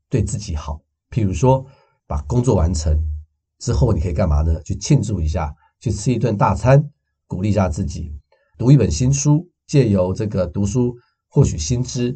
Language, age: Chinese, 50-69